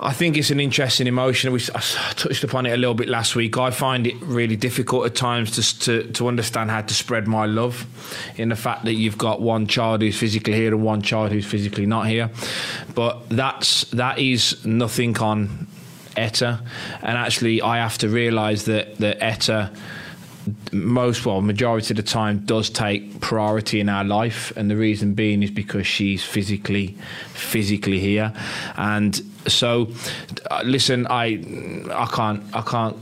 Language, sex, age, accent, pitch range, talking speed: English, male, 20-39, British, 110-125 Hz, 175 wpm